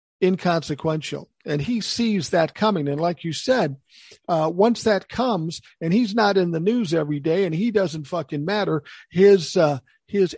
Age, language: 50-69, English